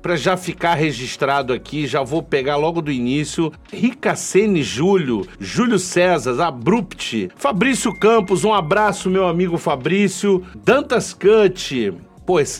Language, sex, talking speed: Portuguese, male, 125 wpm